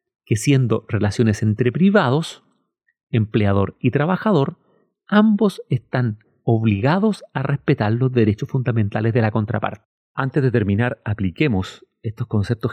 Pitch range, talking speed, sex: 105-130 Hz, 120 wpm, male